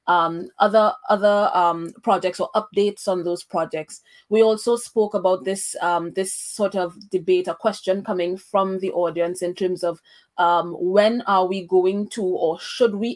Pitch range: 180-205 Hz